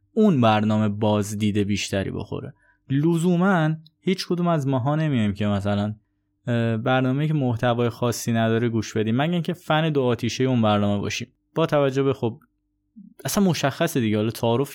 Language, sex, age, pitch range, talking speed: Persian, male, 20-39, 110-155 Hz, 155 wpm